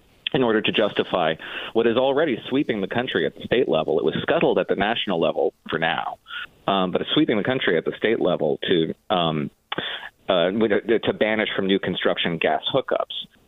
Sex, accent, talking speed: male, American, 190 wpm